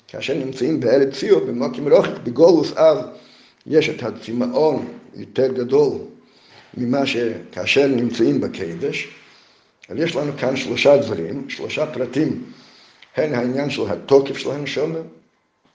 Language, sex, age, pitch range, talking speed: Hebrew, male, 50-69, 125-165 Hz, 115 wpm